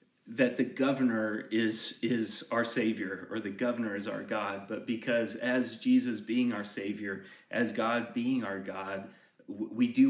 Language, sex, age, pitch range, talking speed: English, male, 30-49, 110-125 Hz, 160 wpm